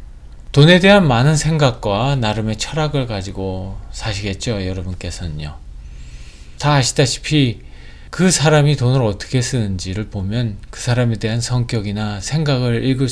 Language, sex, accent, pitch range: Korean, male, native, 95-130 Hz